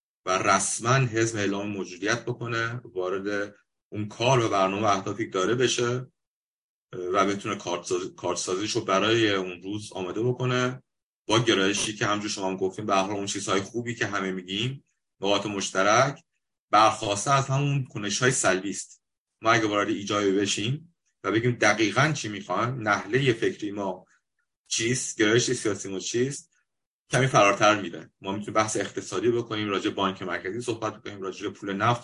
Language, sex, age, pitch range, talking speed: Persian, male, 30-49, 100-120 Hz, 150 wpm